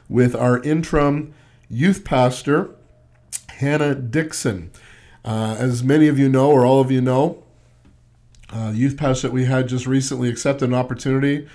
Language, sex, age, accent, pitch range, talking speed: English, male, 50-69, American, 120-140 Hz, 155 wpm